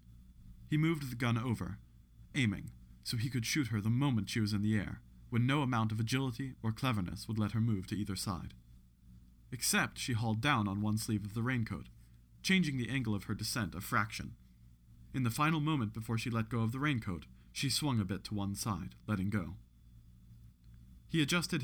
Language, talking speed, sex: English, 200 wpm, male